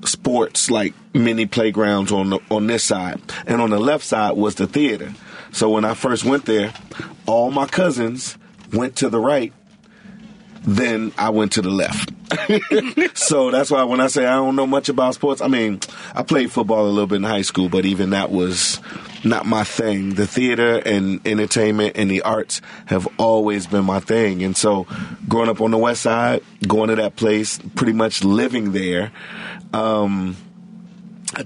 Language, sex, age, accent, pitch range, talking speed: English, male, 40-59, American, 105-130 Hz, 180 wpm